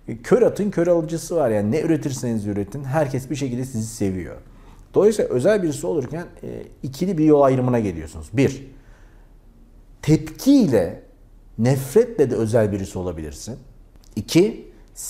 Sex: male